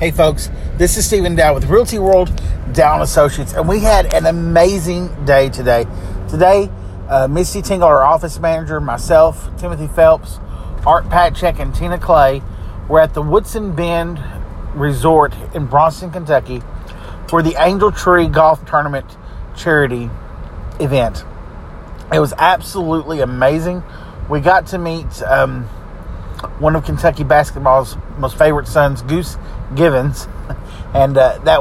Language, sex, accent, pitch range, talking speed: English, male, American, 115-165 Hz, 135 wpm